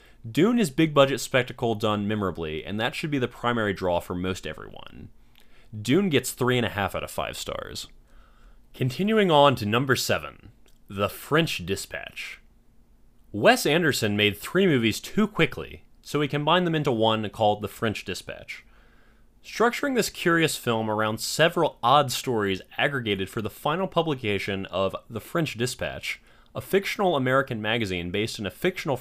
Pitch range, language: 105-150 Hz, English